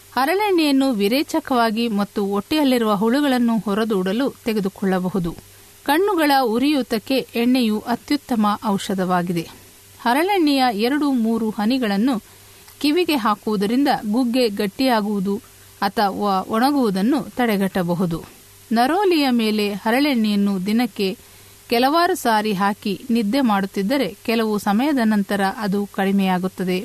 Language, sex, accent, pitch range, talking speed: Kannada, female, native, 200-255 Hz, 85 wpm